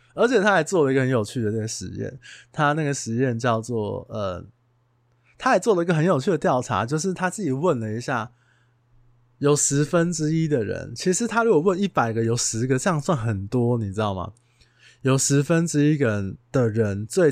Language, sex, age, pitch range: Chinese, male, 20-39, 115-155 Hz